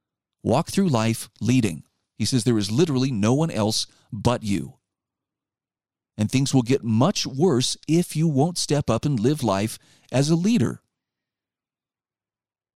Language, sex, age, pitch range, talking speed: English, male, 40-59, 115-165 Hz, 145 wpm